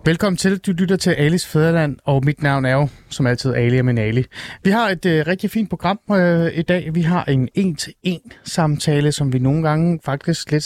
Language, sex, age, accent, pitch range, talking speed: Danish, male, 30-49, native, 135-175 Hz, 215 wpm